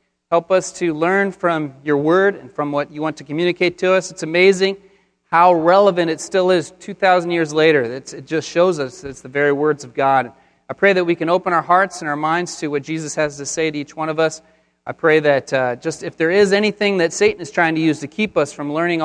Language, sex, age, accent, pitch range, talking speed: English, male, 30-49, American, 140-190 Hz, 250 wpm